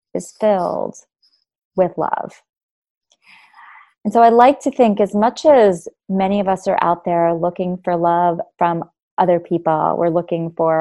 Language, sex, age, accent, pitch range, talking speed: English, female, 30-49, American, 170-205 Hz, 155 wpm